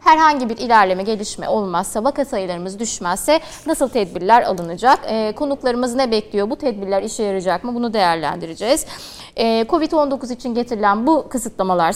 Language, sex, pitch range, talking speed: Turkish, female, 205-275 Hz, 140 wpm